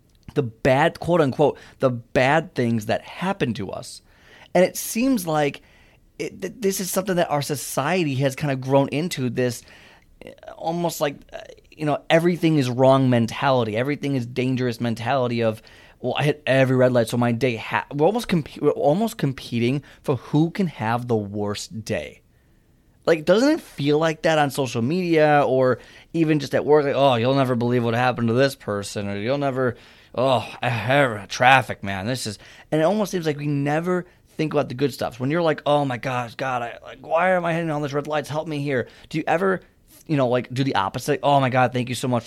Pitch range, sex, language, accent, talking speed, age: 120-155 Hz, male, English, American, 195 wpm, 30-49